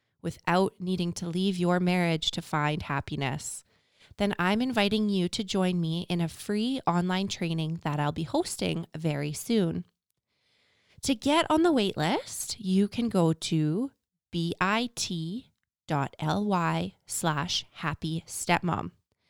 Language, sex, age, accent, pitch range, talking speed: English, female, 20-39, American, 165-215 Hz, 115 wpm